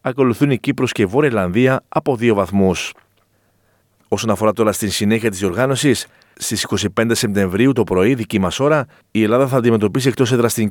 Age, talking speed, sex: 40-59, 180 wpm, male